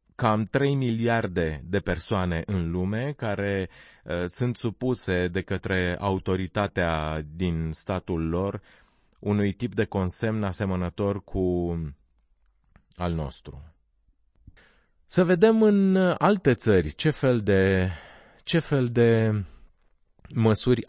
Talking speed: 105 wpm